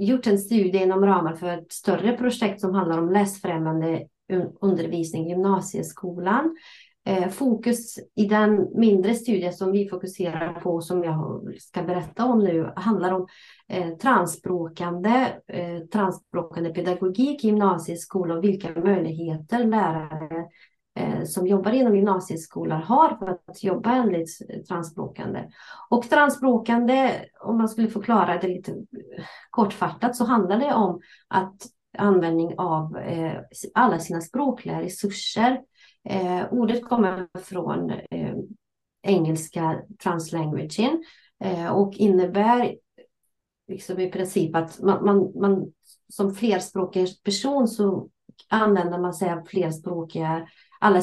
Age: 30-49